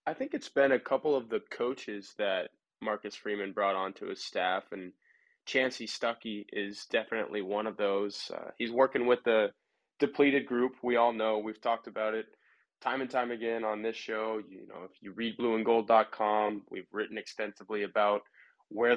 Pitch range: 105-125 Hz